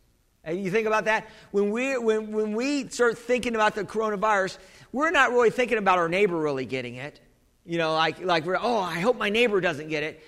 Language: English